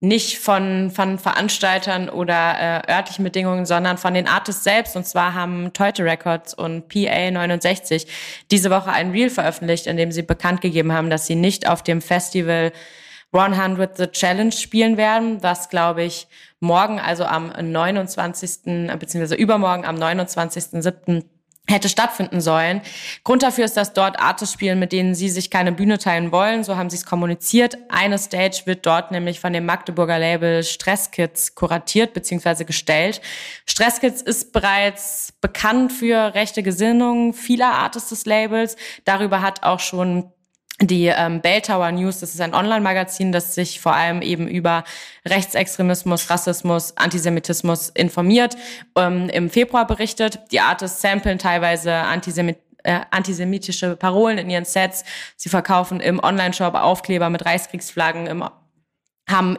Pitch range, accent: 170-205 Hz, German